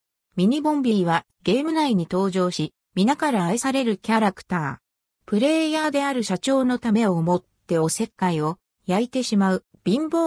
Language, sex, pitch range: Japanese, female, 175-260 Hz